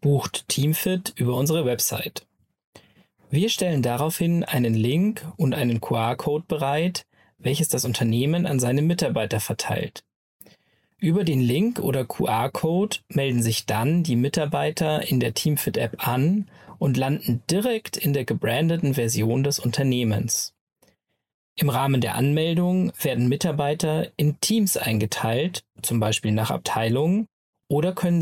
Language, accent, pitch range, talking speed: German, German, 125-175 Hz, 125 wpm